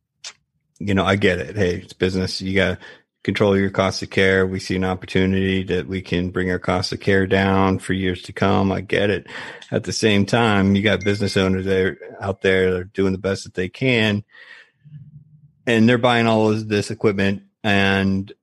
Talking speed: 200 wpm